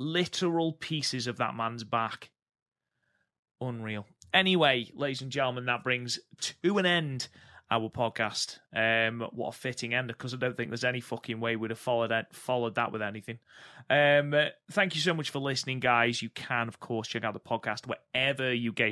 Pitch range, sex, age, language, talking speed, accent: 115-145 Hz, male, 30-49, English, 185 wpm, British